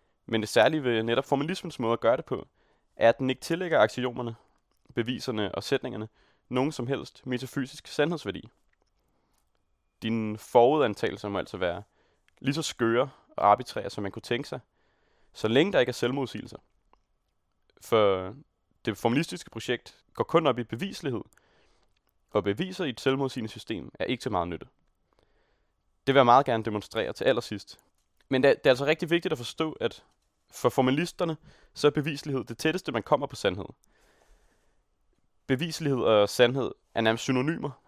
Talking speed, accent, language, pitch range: 160 wpm, native, Danish, 110-140 Hz